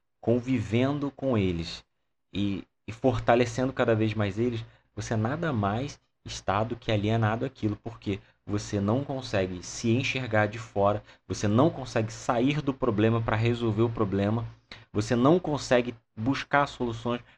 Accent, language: Brazilian, Portuguese